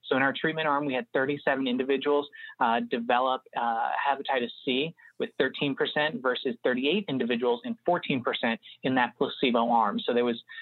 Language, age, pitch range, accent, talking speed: Italian, 30-49, 125-175 Hz, American, 160 wpm